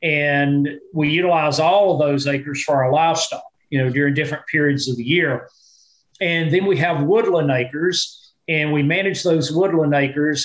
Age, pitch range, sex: 40-59, 140-170 Hz, male